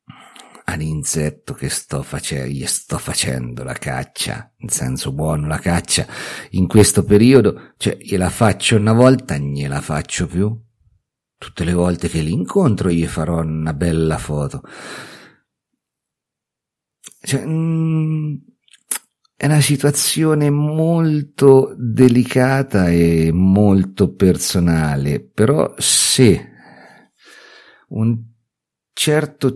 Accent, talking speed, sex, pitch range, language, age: native, 105 wpm, male, 85-125 Hz, Italian, 50-69